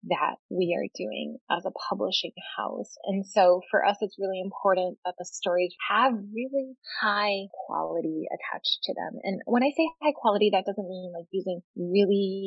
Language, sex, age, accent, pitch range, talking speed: English, female, 30-49, American, 185-250 Hz, 180 wpm